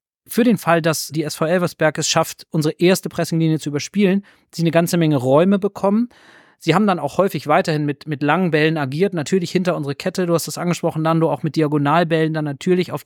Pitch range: 155-185 Hz